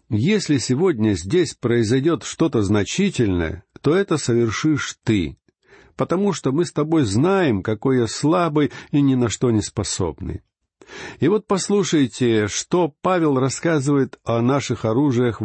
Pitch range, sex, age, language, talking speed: 105-145 Hz, male, 60-79, Russian, 130 wpm